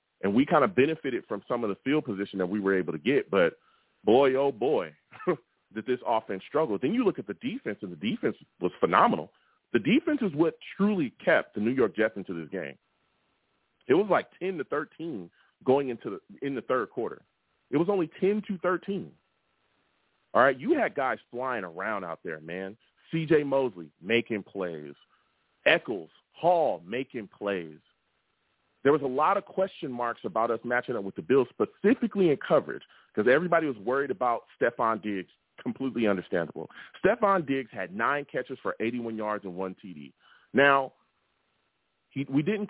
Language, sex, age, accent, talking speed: English, male, 30-49, American, 175 wpm